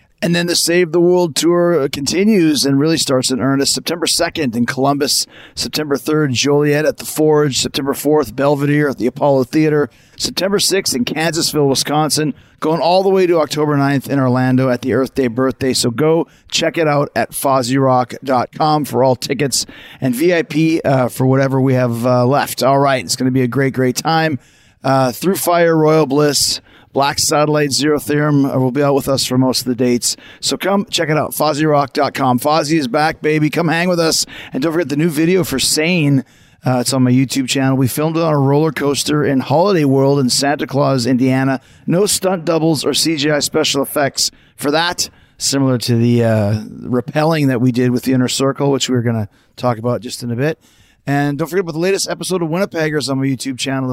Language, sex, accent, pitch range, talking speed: English, male, American, 130-155 Hz, 205 wpm